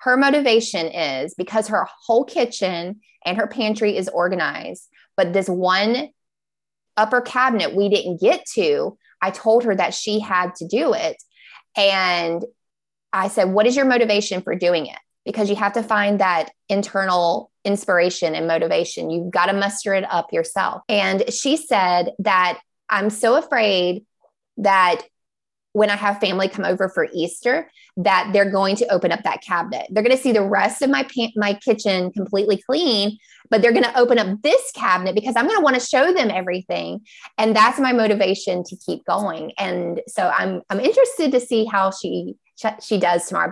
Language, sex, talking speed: English, female, 180 wpm